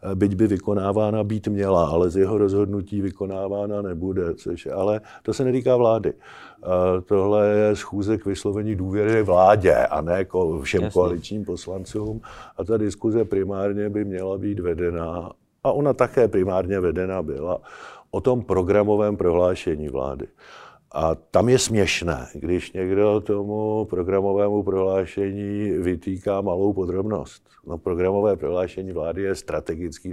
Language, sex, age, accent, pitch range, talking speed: Czech, male, 50-69, native, 90-105 Hz, 130 wpm